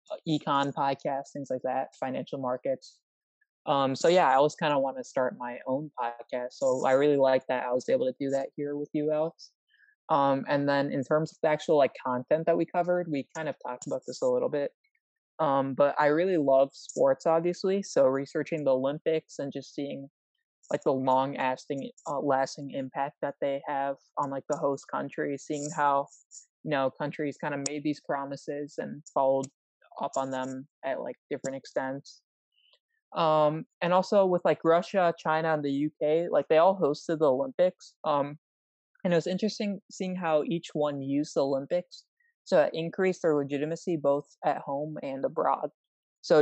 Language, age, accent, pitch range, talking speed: English, 20-39, American, 135-165 Hz, 185 wpm